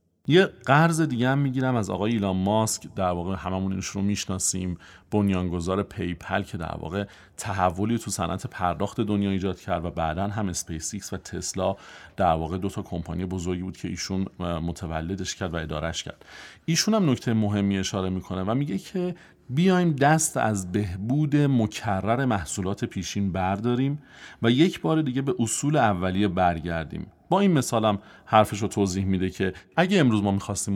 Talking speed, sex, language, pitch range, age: 165 wpm, male, Persian, 95-130 Hz, 40-59